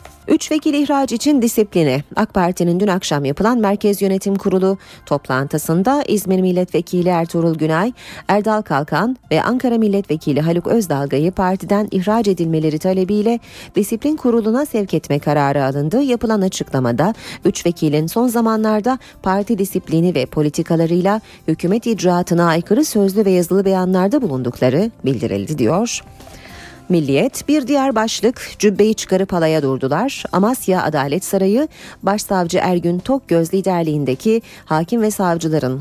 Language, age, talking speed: Turkish, 40-59, 120 wpm